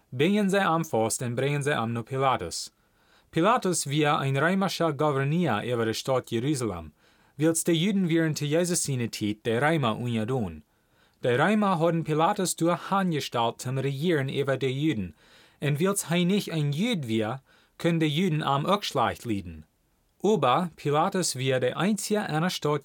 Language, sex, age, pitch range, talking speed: German, male, 30-49, 120-170 Hz, 165 wpm